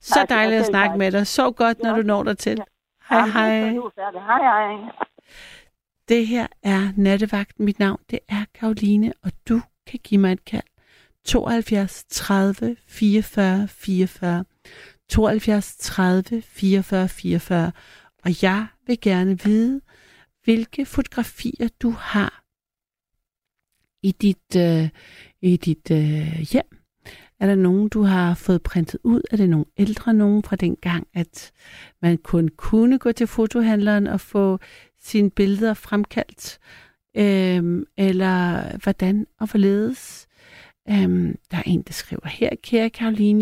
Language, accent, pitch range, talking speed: Danish, native, 190-225 Hz, 135 wpm